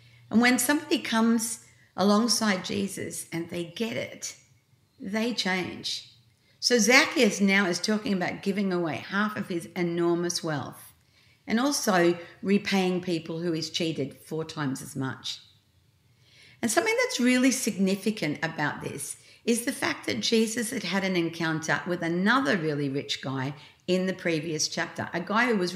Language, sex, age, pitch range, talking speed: English, female, 50-69, 160-220 Hz, 150 wpm